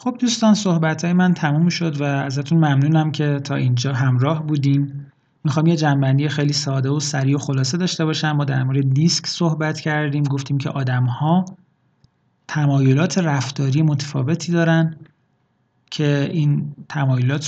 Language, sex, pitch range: Persian, male, 135-160 Hz